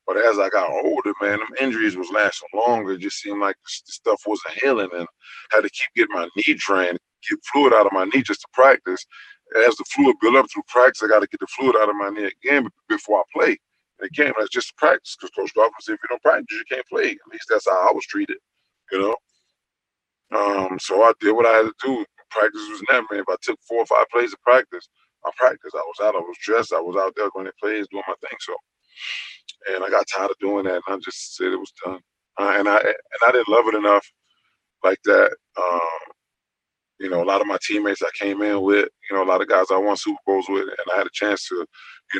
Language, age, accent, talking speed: English, 20-39, American, 250 wpm